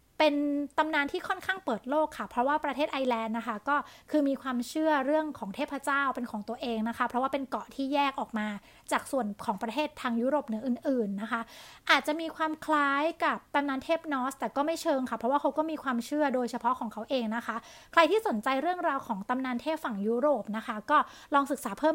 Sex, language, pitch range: female, Thai, 235-305 Hz